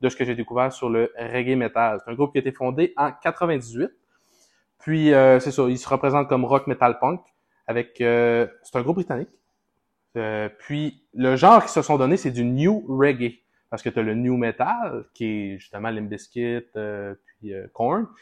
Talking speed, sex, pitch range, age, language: 200 wpm, male, 115-145 Hz, 20-39, French